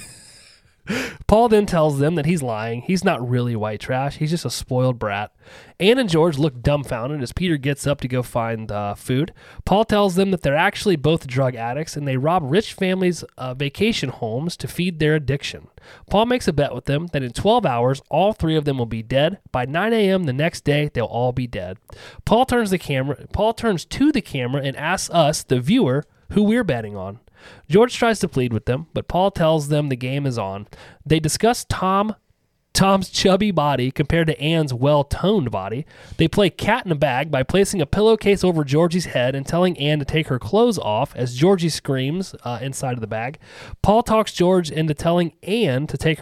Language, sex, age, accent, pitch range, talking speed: English, male, 30-49, American, 130-180 Hz, 205 wpm